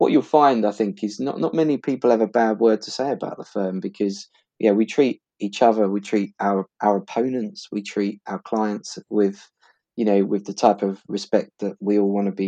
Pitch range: 100-110 Hz